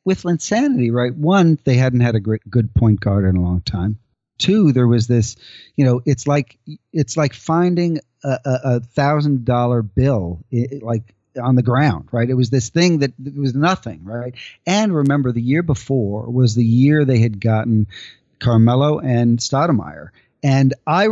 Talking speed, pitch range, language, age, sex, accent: 180 wpm, 115-140 Hz, English, 40-59, male, American